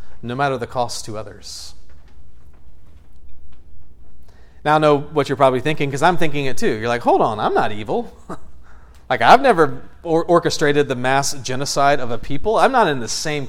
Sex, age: male, 30-49